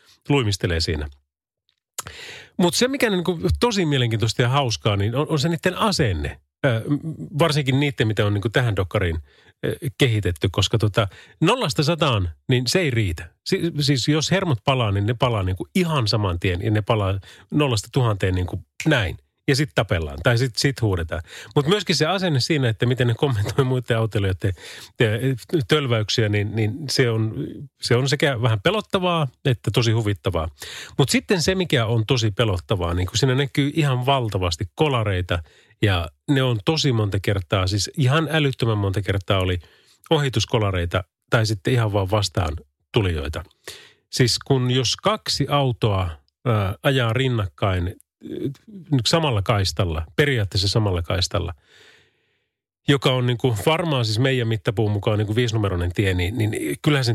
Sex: male